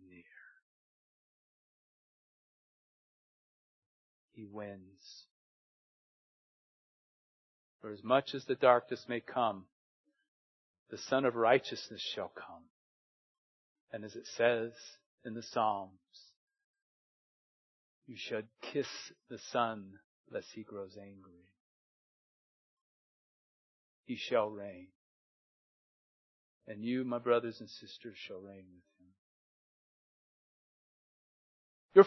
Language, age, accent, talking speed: English, 30-49, American, 85 wpm